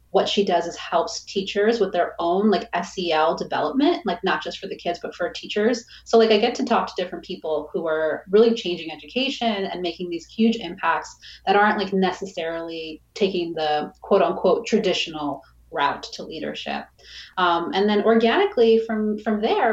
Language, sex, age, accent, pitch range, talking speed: English, female, 30-49, American, 180-230 Hz, 180 wpm